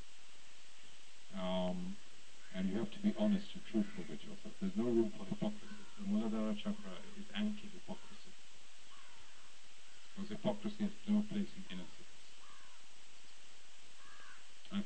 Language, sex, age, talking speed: English, male, 50-69, 115 wpm